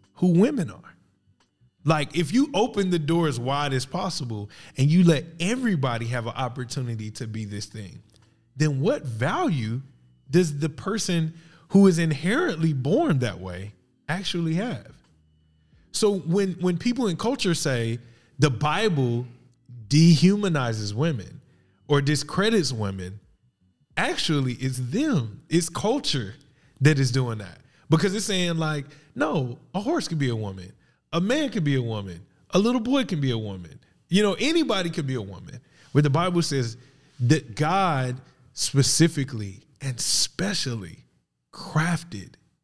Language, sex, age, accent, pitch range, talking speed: English, male, 20-39, American, 120-170 Hz, 145 wpm